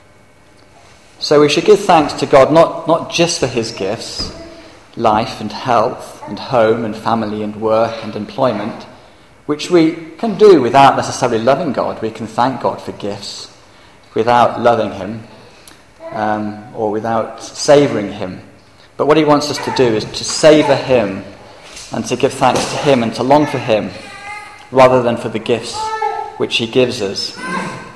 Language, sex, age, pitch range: English, male, 40-59, 105-140 Hz